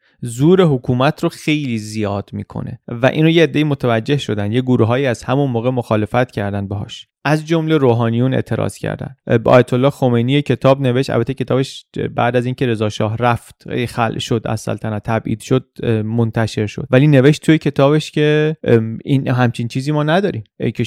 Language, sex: Persian, male